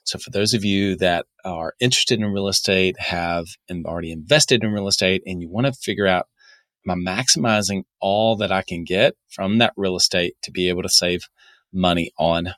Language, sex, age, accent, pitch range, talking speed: English, male, 30-49, American, 95-115 Hz, 195 wpm